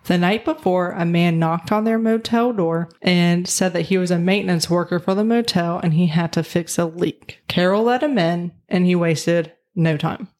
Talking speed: 215 wpm